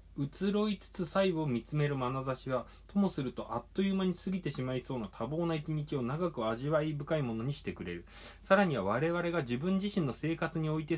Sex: male